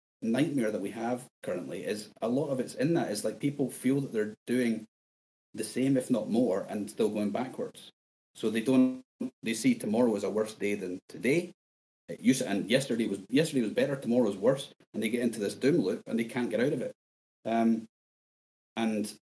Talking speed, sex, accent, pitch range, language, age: 205 wpm, male, British, 110-145 Hz, English, 30-49